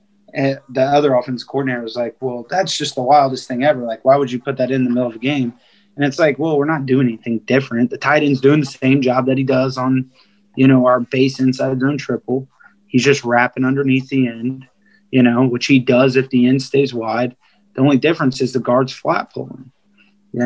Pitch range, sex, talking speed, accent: 120-135 Hz, male, 230 wpm, American